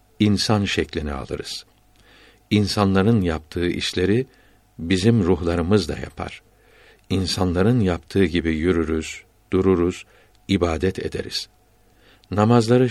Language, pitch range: Turkish, 90-105 Hz